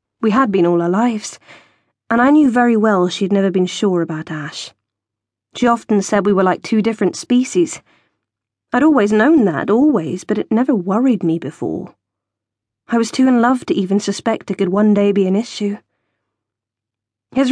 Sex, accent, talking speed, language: female, British, 180 wpm, English